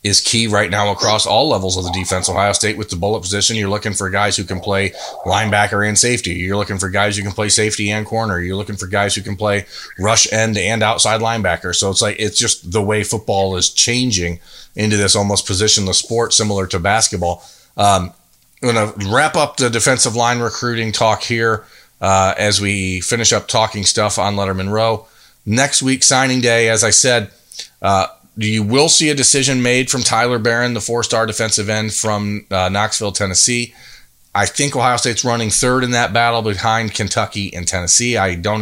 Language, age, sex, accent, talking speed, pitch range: English, 30-49, male, American, 200 wpm, 100-115 Hz